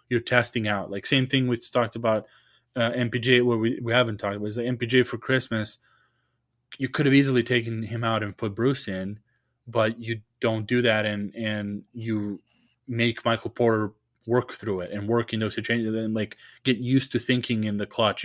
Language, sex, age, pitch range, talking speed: English, male, 20-39, 110-125 Hz, 205 wpm